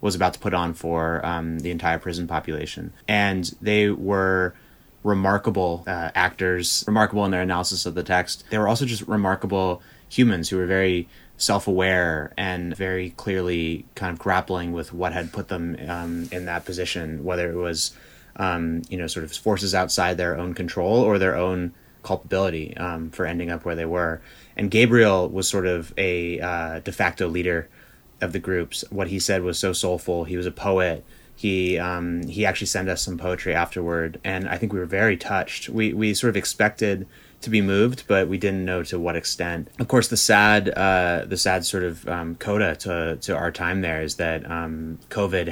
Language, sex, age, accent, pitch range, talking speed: English, male, 20-39, American, 85-95 Hz, 195 wpm